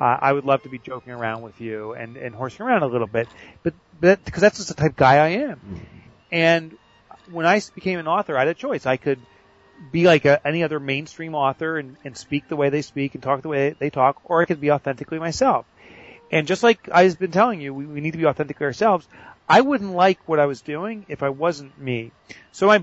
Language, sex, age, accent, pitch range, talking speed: English, male, 30-49, American, 130-165 Hz, 245 wpm